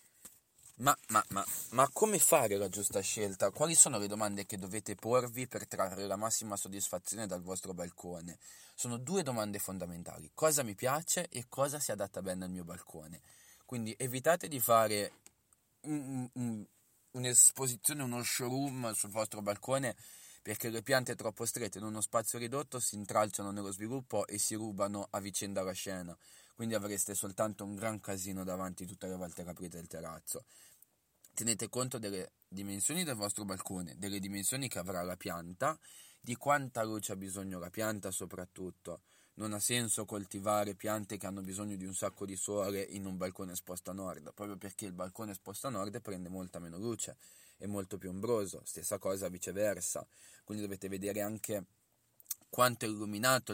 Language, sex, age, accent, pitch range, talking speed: Italian, male, 20-39, native, 95-115 Hz, 170 wpm